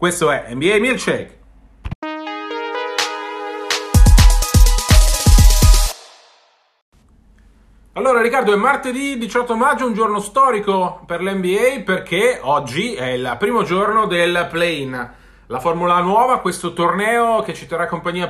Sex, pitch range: male, 155-215 Hz